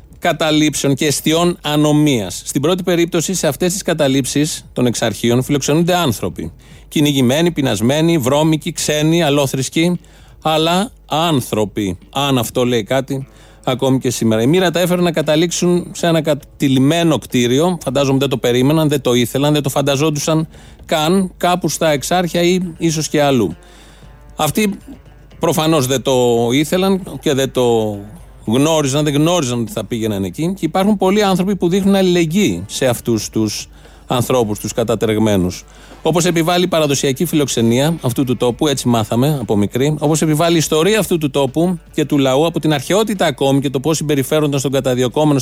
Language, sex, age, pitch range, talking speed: Greek, male, 30-49, 130-170 Hz, 155 wpm